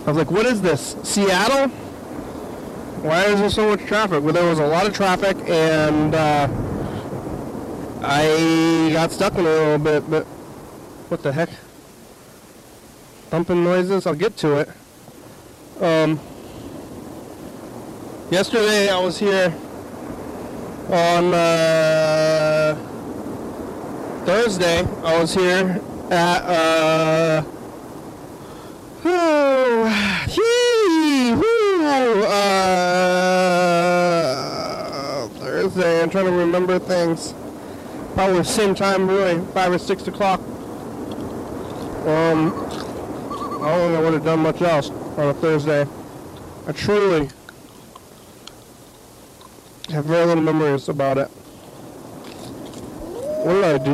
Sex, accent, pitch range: male, American, 160-195 Hz